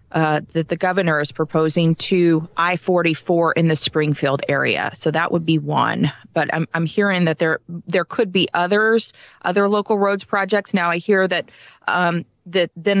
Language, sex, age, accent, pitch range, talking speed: English, female, 30-49, American, 160-200 Hz, 175 wpm